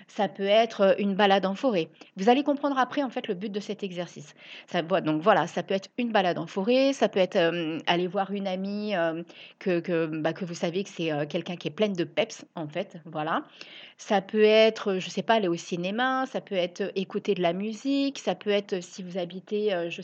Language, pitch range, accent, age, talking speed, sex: French, 185-240 Hz, French, 40-59, 235 wpm, female